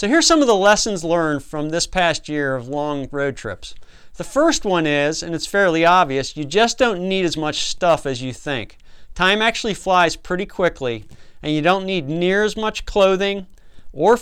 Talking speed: 200 wpm